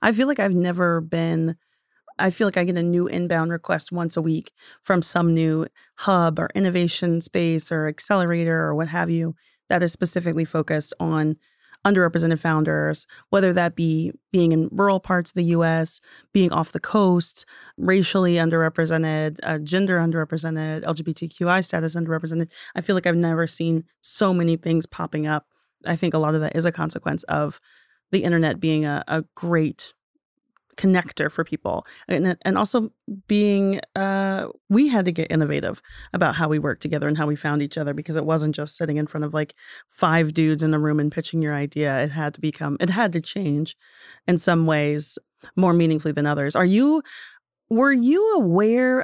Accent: American